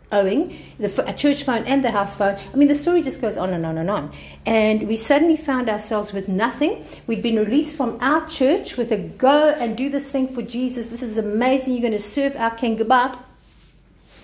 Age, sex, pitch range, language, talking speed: 50-69, female, 195-250 Hz, English, 220 wpm